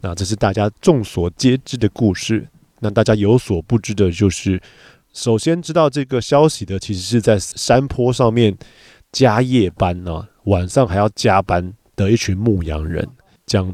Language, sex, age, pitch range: Chinese, male, 20-39, 95-115 Hz